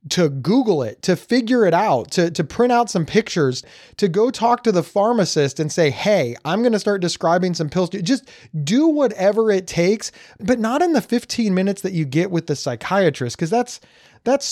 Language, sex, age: English, male, 30-49